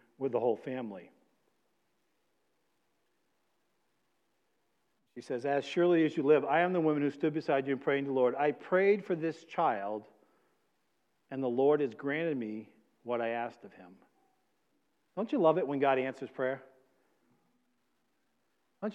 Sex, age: male, 50-69